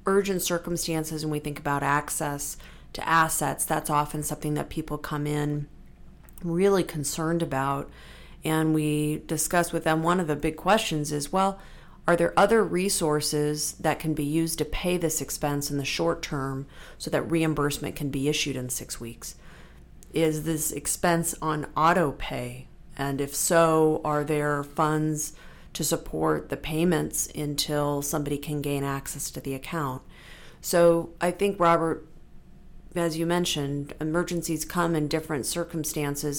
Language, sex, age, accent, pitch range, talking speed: English, female, 40-59, American, 145-165 Hz, 150 wpm